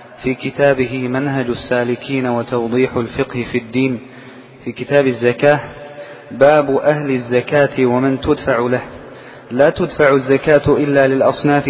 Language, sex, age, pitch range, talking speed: Arabic, male, 30-49, 130-145 Hz, 115 wpm